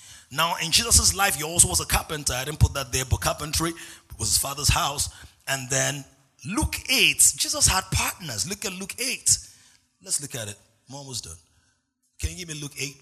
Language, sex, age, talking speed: English, male, 30-49, 205 wpm